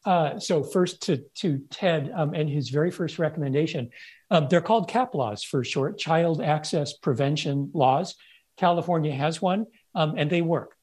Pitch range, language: 135-170 Hz, English